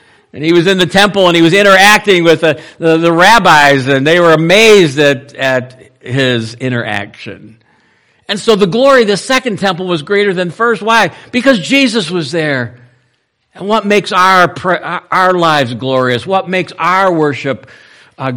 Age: 60-79